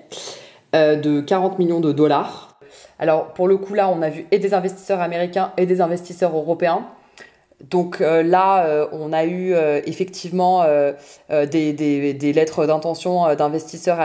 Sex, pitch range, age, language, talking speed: female, 150-175 Hz, 20-39, French, 170 wpm